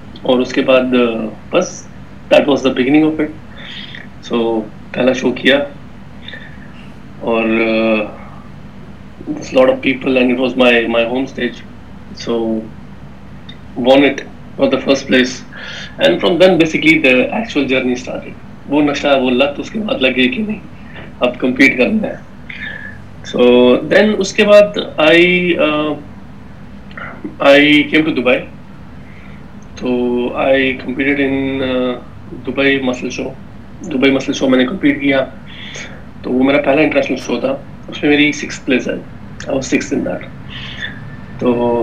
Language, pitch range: Urdu, 125-145 Hz